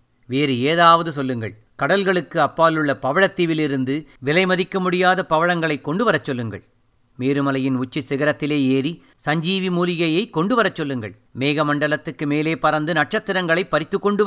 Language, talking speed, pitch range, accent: Tamil, 125 wpm, 135-190 Hz, native